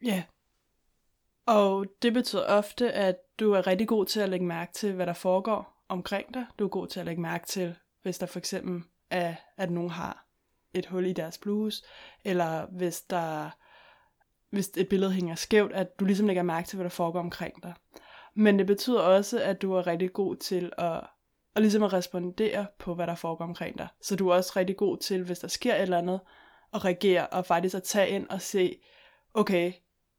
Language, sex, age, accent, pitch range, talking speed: Danish, female, 20-39, native, 175-200 Hz, 210 wpm